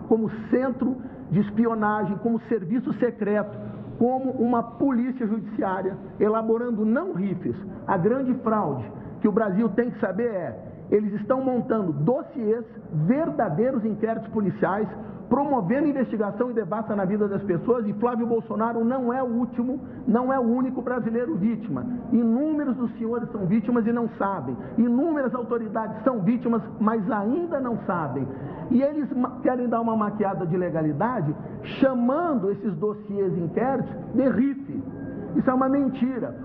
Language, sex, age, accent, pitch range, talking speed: Portuguese, male, 60-79, Brazilian, 210-245 Hz, 145 wpm